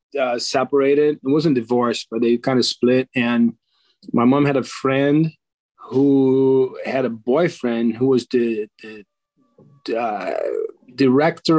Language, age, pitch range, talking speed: English, 30-49, 120-140 Hz, 135 wpm